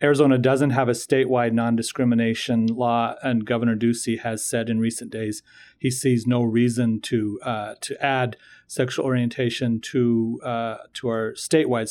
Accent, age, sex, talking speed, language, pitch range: American, 40-59, male, 150 wpm, English, 115-130 Hz